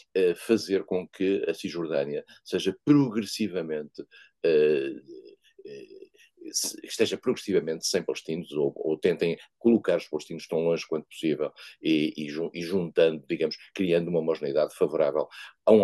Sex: male